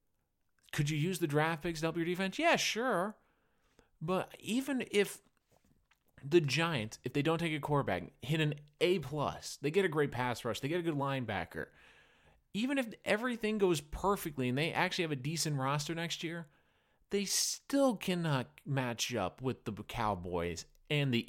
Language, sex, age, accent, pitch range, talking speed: English, male, 30-49, American, 140-185 Hz, 170 wpm